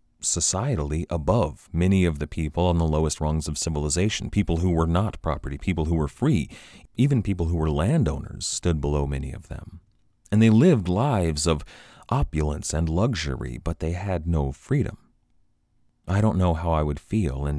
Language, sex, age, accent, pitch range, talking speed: English, male, 30-49, American, 75-100 Hz, 175 wpm